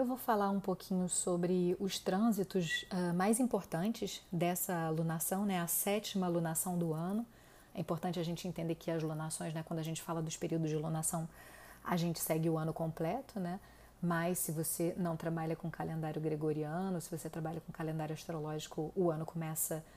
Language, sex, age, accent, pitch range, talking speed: Portuguese, female, 30-49, Brazilian, 165-190 Hz, 180 wpm